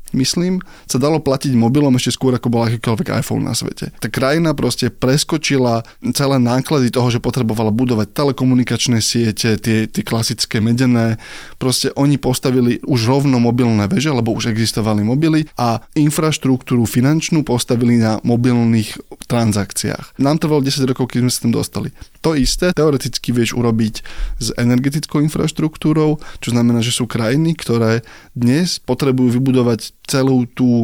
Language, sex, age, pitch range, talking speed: Slovak, male, 20-39, 120-145 Hz, 145 wpm